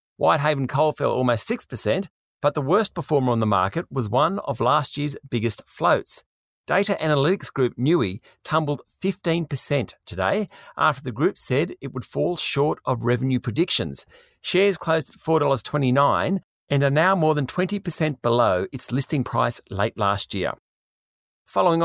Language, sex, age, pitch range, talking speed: English, male, 40-59, 130-165 Hz, 150 wpm